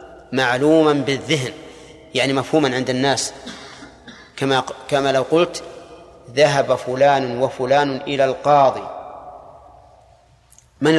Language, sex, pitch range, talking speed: Arabic, male, 135-160 Hz, 85 wpm